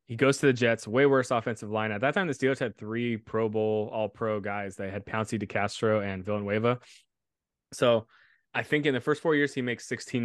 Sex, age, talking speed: male, 20-39, 225 wpm